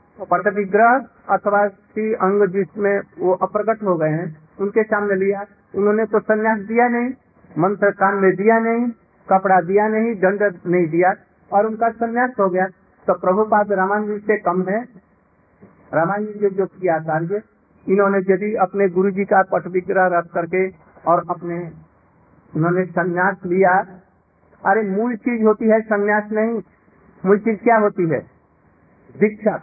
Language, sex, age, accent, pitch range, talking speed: Hindi, male, 50-69, native, 185-215 Hz, 145 wpm